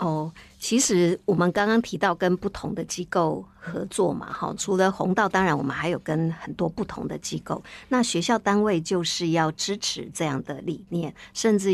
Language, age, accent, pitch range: Chinese, 50-69, American, 165-205 Hz